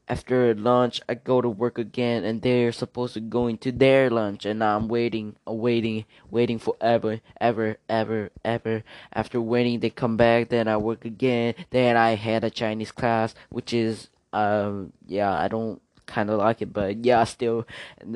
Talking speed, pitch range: 180 wpm, 110-120 Hz